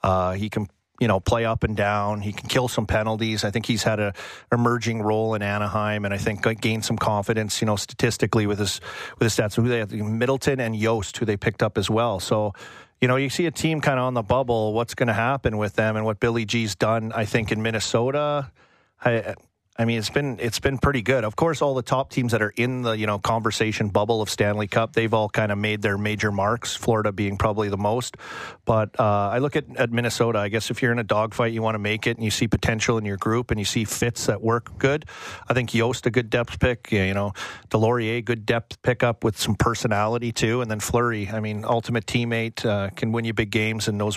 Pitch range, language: 105-120 Hz, English